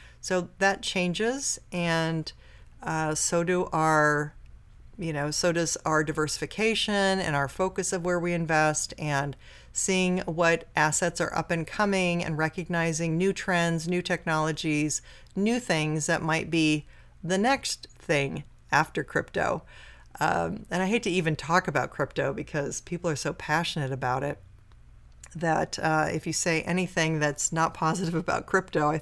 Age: 40-59